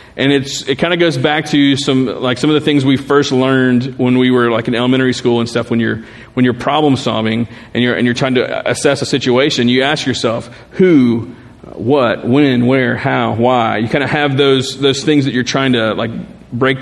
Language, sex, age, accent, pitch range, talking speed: English, male, 40-59, American, 120-155 Hz, 225 wpm